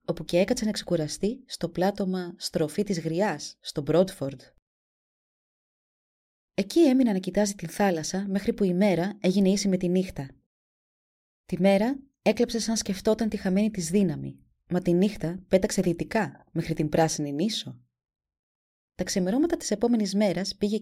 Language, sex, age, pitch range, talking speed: Greek, female, 20-39, 165-215 Hz, 145 wpm